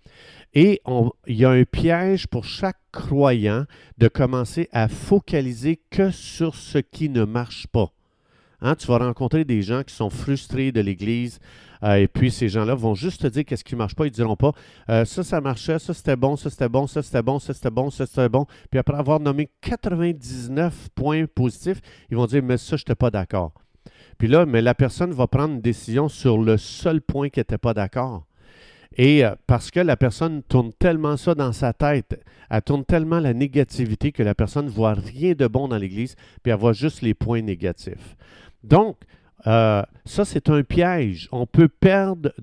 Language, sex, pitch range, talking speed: French, male, 115-155 Hz, 210 wpm